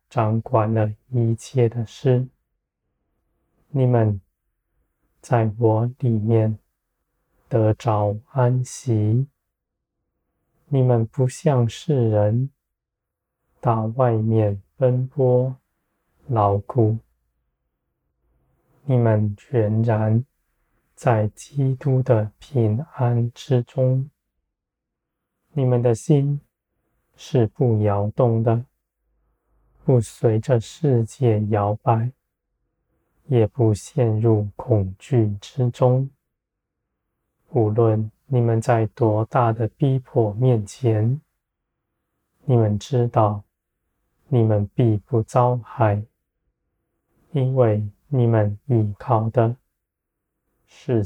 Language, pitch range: Chinese, 105-125 Hz